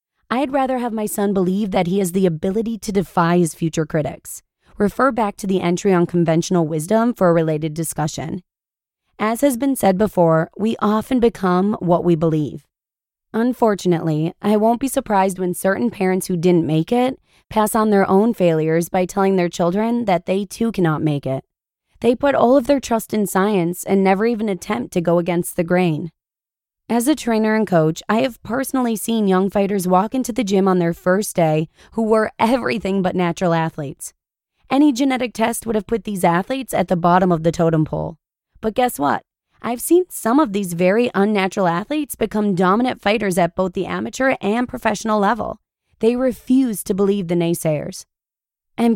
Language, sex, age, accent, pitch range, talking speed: English, female, 20-39, American, 175-225 Hz, 185 wpm